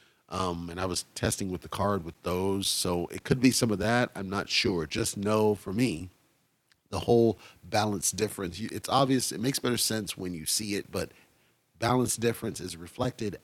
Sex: male